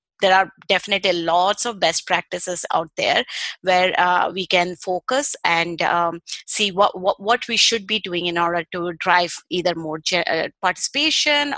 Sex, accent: female, Indian